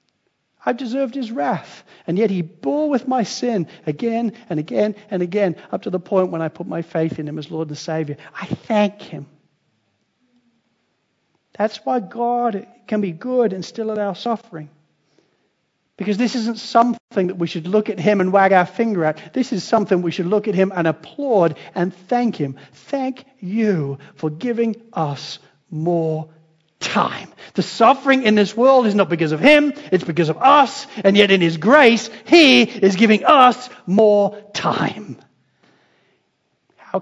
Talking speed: 170 wpm